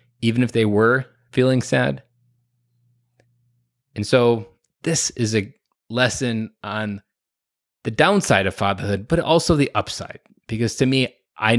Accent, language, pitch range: American, English, 105-130 Hz